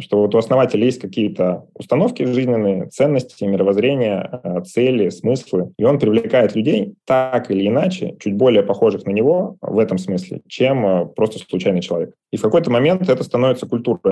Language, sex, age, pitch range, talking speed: Russian, male, 20-39, 100-125 Hz, 160 wpm